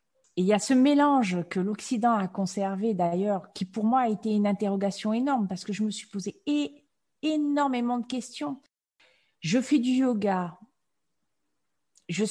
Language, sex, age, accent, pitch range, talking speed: French, female, 40-59, French, 175-220 Hz, 165 wpm